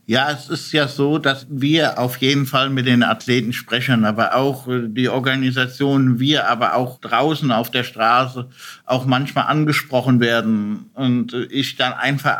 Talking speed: 160 wpm